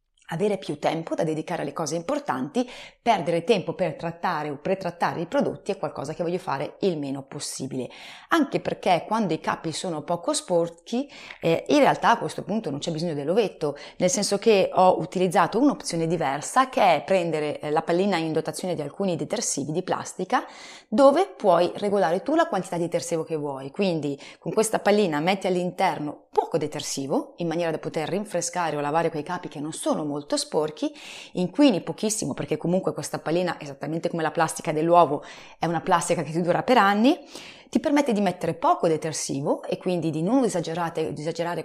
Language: Italian